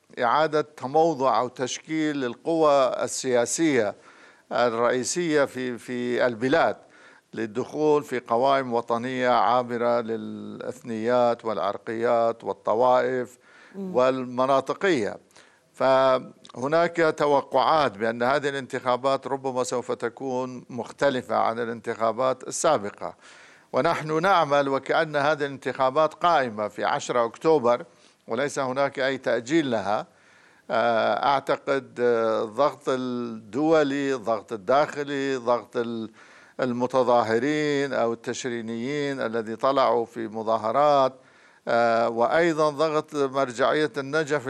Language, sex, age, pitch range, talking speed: Arabic, male, 50-69, 120-145 Hz, 85 wpm